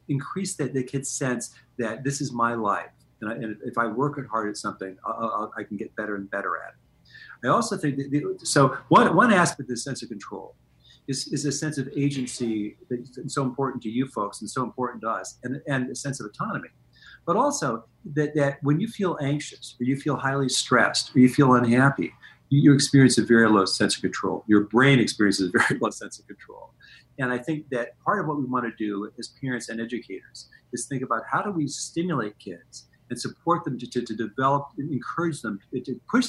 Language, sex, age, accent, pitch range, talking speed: English, male, 50-69, American, 110-140 Hz, 225 wpm